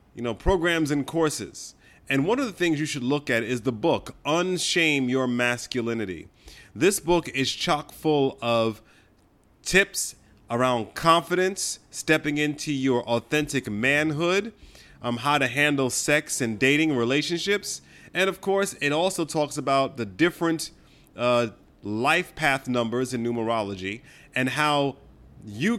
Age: 30-49